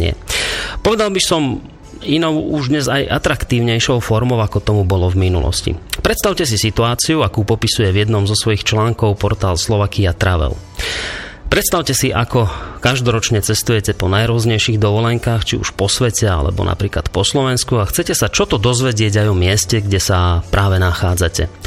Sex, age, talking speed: male, 30-49, 160 wpm